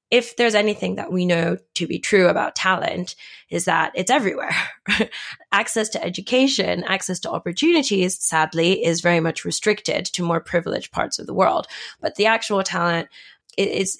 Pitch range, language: 175-200 Hz, English